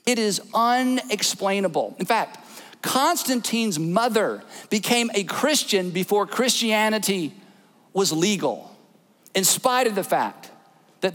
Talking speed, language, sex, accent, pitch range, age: 110 wpm, English, male, American, 190-245 Hz, 50-69